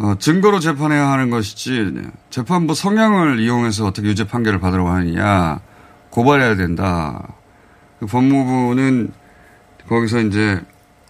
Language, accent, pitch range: Korean, native, 100-135 Hz